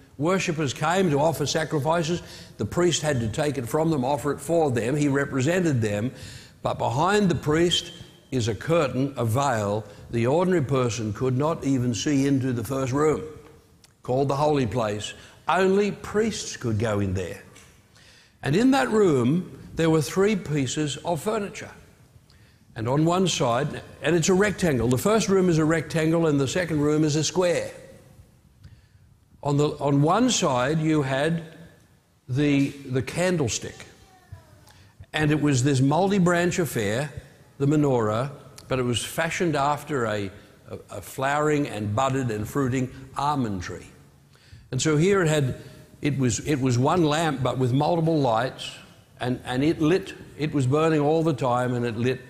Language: English